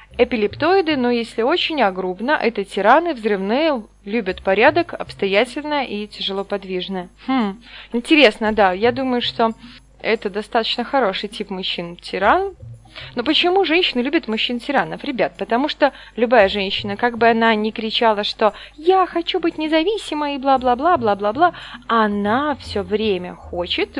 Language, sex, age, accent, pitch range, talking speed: Russian, female, 20-39, native, 210-300 Hz, 130 wpm